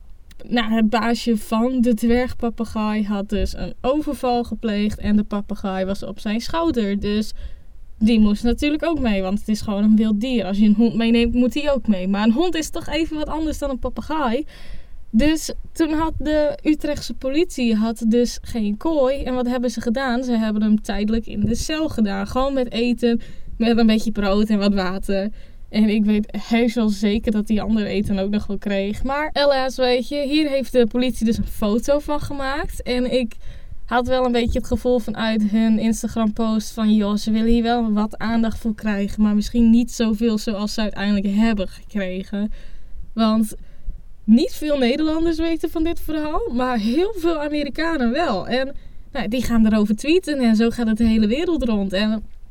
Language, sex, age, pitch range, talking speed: Dutch, female, 10-29, 215-260 Hz, 195 wpm